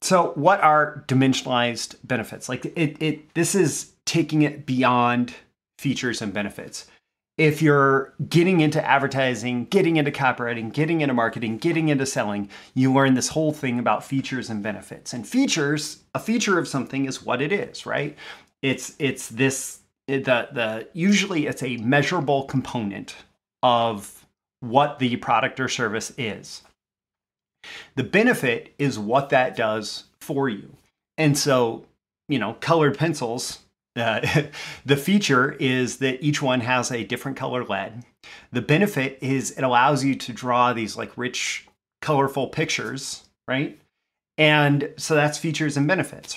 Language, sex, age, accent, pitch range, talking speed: English, male, 30-49, American, 120-150 Hz, 145 wpm